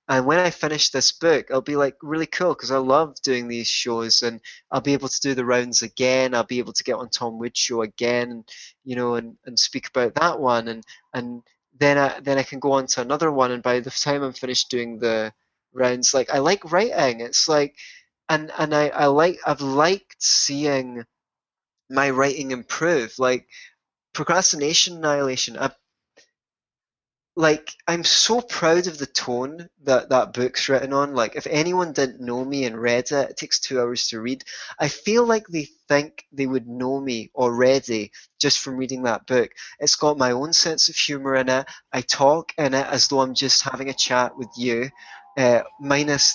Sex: male